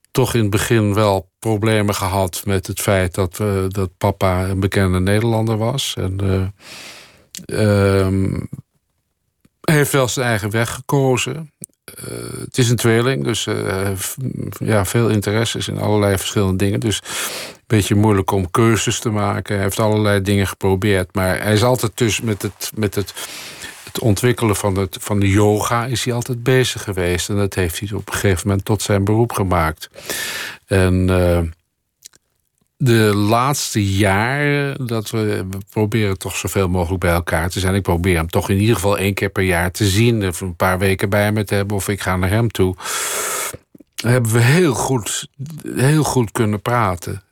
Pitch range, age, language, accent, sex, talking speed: 95-115 Hz, 50-69, Dutch, Dutch, male, 180 wpm